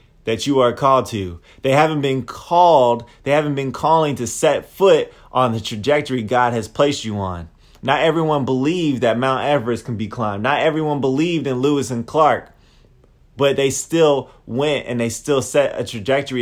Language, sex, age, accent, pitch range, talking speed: English, male, 20-39, American, 120-150 Hz, 185 wpm